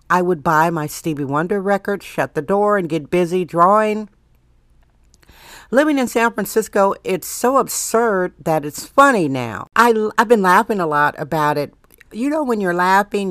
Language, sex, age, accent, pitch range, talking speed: English, female, 60-79, American, 175-220 Hz, 175 wpm